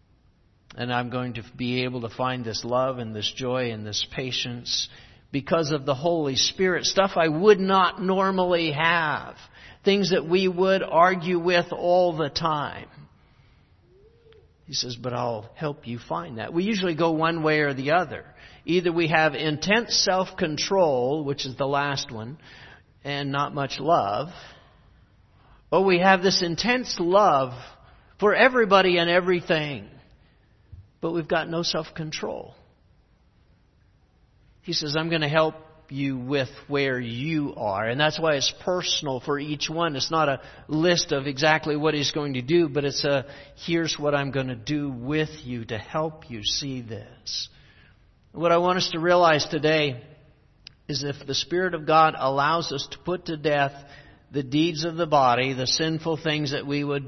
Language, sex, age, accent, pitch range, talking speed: English, male, 50-69, American, 130-170 Hz, 165 wpm